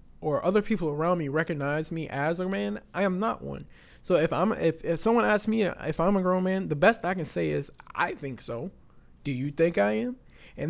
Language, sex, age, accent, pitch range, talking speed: English, male, 20-39, American, 145-190 Hz, 235 wpm